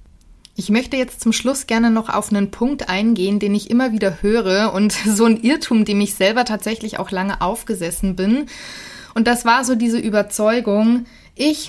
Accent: German